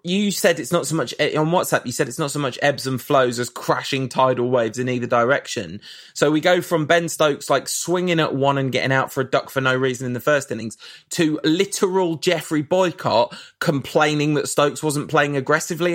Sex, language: male, English